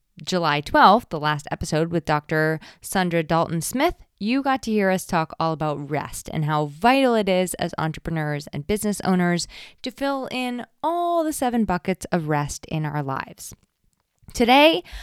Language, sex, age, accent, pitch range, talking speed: English, female, 20-39, American, 160-230 Hz, 165 wpm